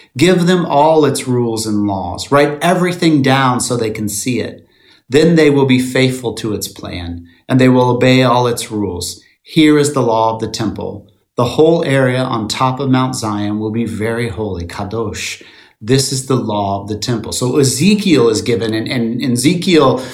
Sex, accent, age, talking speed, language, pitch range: male, American, 30-49, 195 wpm, English, 115-155 Hz